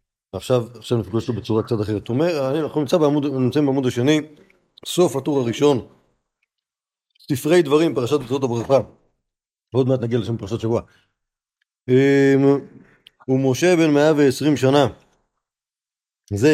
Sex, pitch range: male, 110-145 Hz